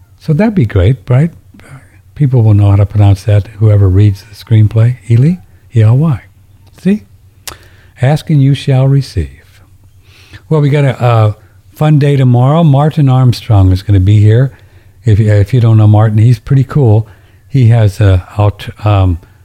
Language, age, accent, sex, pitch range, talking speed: English, 60-79, American, male, 95-115 Hz, 155 wpm